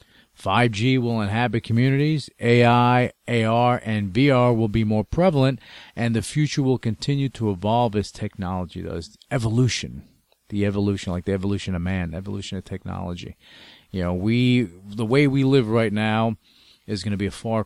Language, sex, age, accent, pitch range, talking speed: English, male, 40-59, American, 95-120 Hz, 165 wpm